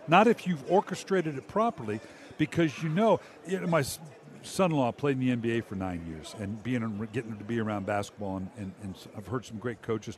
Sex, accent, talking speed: male, American, 205 wpm